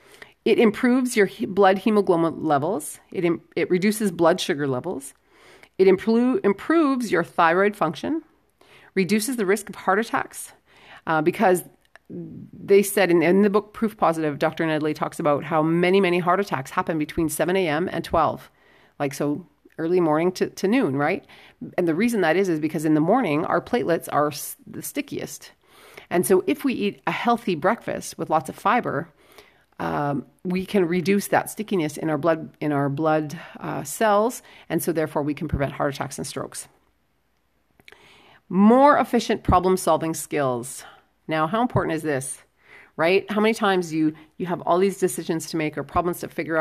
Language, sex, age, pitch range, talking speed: English, female, 40-59, 160-200 Hz, 170 wpm